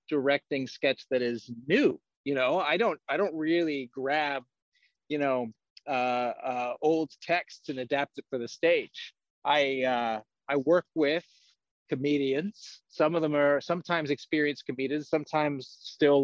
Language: English